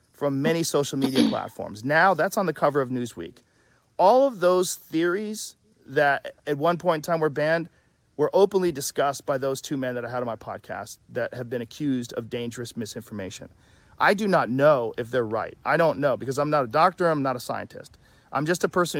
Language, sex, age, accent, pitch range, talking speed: English, male, 40-59, American, 130-160 Hz, 210 wpm